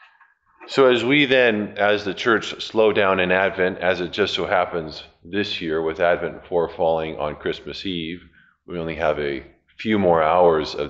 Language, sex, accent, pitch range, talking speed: English, male, American, 95-110 Hz, 180 wpm